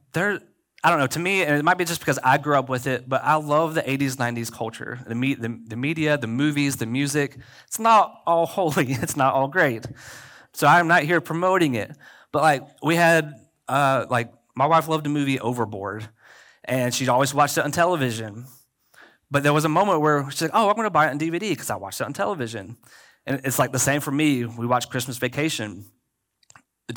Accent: American